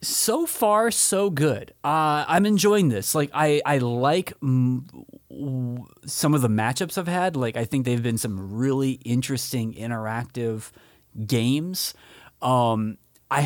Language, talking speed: English, 145 wpm